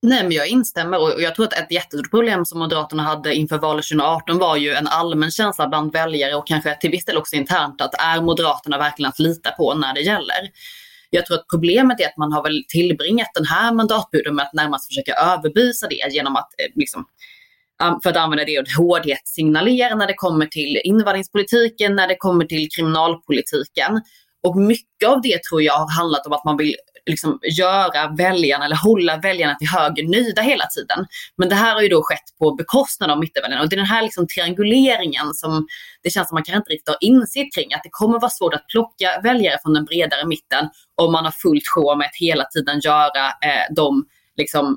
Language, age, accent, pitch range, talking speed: Swedish, 20-39, native, 150-205 Hz, 210 wpm